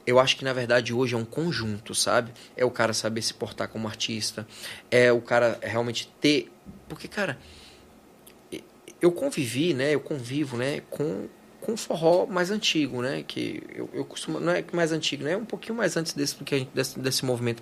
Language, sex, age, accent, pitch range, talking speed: Portuguese, male, 20-39, Brazilian, 120-170 Hz, 190 wpm